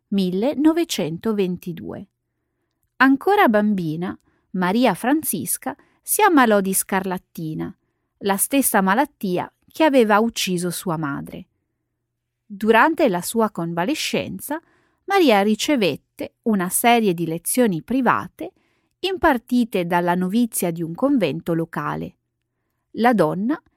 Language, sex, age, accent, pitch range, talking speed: Italian, female, 30-49, native, 180-265 Hz, 95 wpm